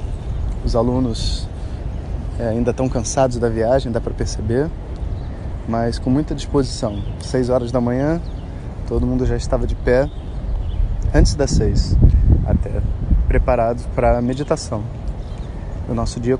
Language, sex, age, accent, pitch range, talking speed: Portuguese, male, 20-39, Brazilian, 110-140 Hz, 130 wpm